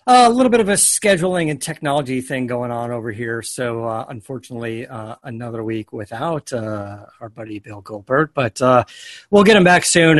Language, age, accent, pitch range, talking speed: English, 40-59, American, 120-160 Hz, 195 wpm